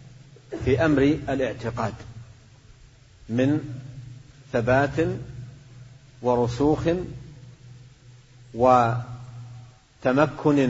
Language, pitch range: Arabic, 120-140 Hz